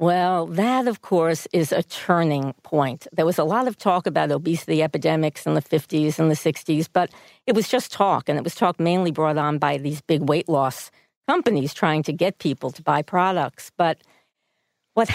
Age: 50-69